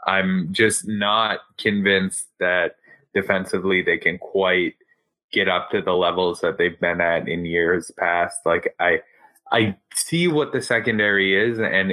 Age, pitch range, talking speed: 20-39, 95-115 Hz, 150 wpm